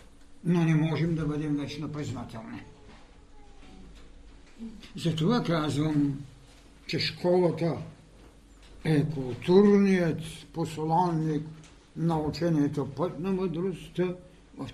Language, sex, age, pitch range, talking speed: Bulgarian, male, 60-79, 140-195 Hz, 80 wpm